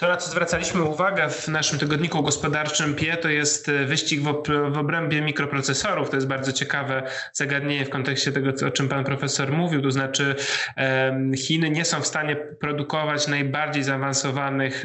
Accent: native